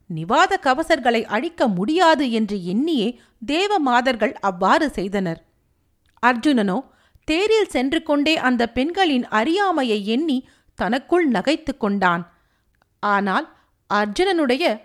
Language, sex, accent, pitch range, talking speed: Tamil, female, native, 220-310 Hz, 90 wpm